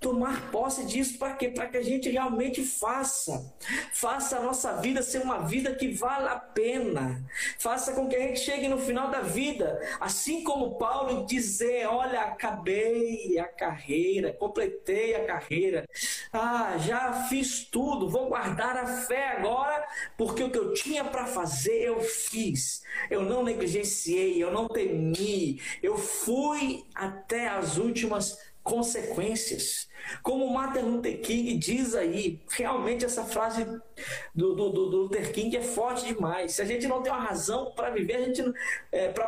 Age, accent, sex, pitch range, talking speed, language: 20-39, Brazilian, male, 225-275 Hz, 155 wpm, Portuguese